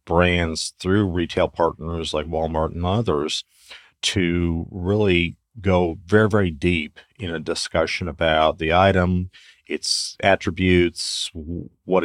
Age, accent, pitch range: 40-59, American, 80-95 Hz